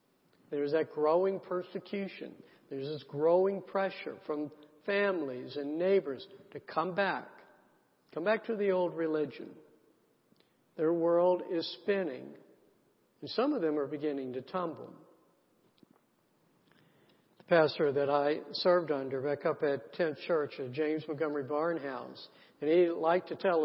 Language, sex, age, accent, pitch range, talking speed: English, male, 60-79, American, 145-175 Hz, 130 wpm